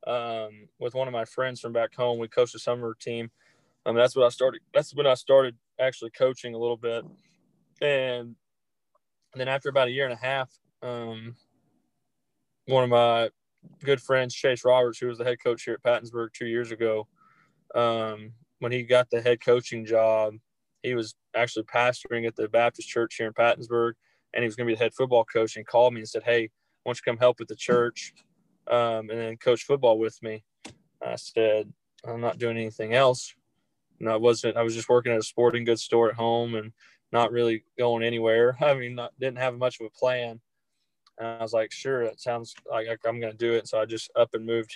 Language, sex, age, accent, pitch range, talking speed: English, male, 20-39, American, 115-125 Hz, 215 wpm